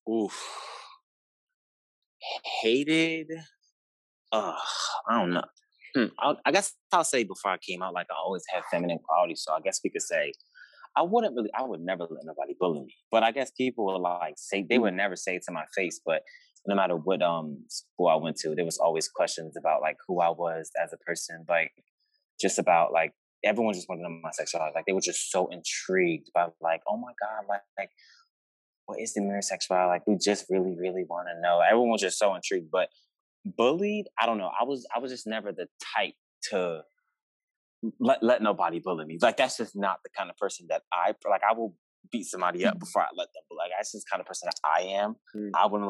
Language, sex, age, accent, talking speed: English, male, 20-39, American, 215 wpm